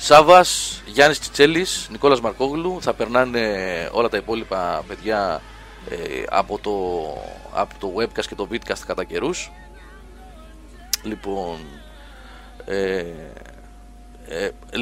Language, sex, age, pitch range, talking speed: Greek, male, 30-49, 105-135 Hz, 100 wpm